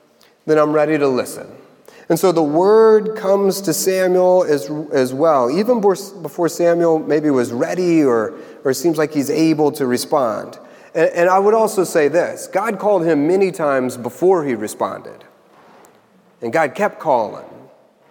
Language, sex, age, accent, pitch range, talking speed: English, male, 30-49, American, 145-200 Hz, 160 wpm